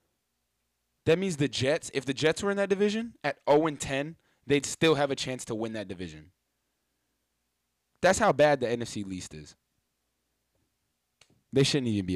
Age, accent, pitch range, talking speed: 20-39, American, 100-155 Hz, 165 wpm